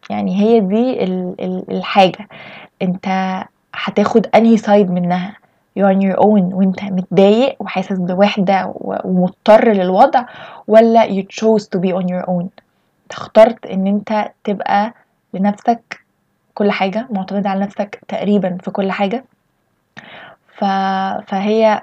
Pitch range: 185-215 Hz